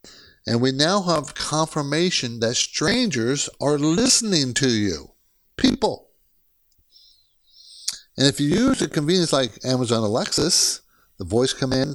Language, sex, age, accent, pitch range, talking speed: English, male, 50-69, American, 120-180 Hz, 120 wpm